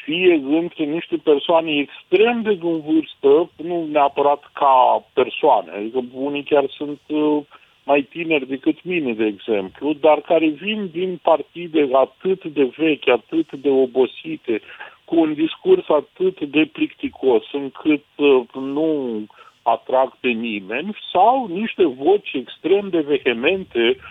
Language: Romanian